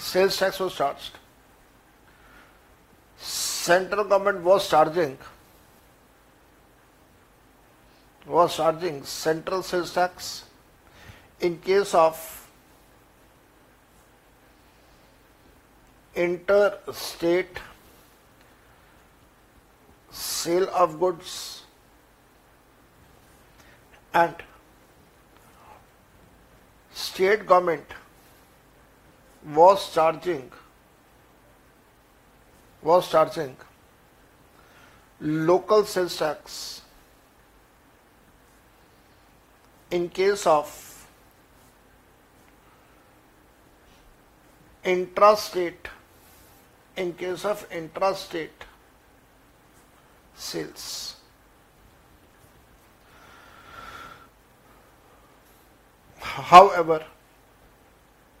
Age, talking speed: 60-79, 45 wpm